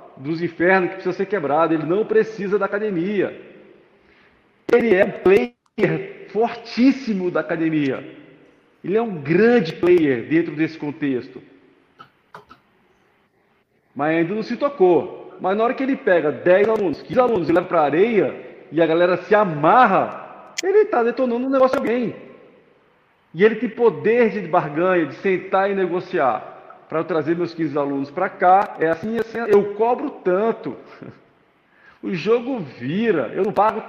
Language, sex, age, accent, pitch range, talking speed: Portuguese, male, 40-59, Brazilian, 165-225 Hz, 160 wpm